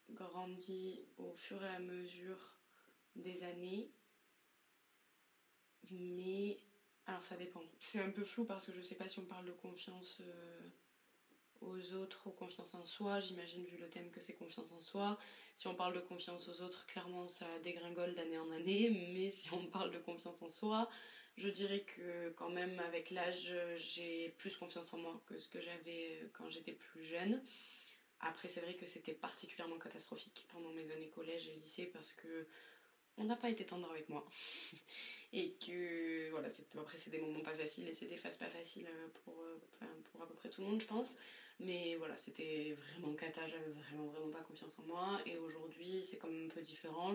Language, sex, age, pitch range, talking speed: French, female, 20-39, 165-190 Hz, 190 wpm